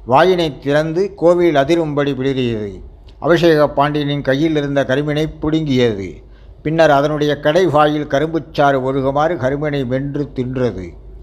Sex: male